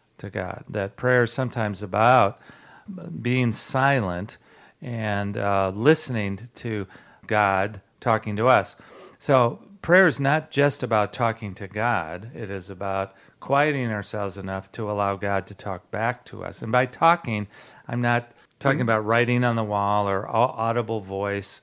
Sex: male